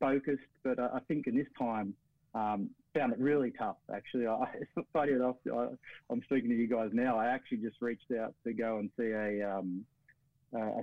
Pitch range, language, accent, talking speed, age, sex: 115-150 Hz, English, Australian, 200 wpm, 30-49, male